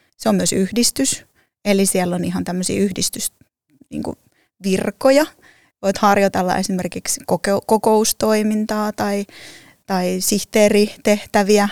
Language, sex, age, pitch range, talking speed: Finnish, female, 20-39, 190-225 Hz, 85 wpm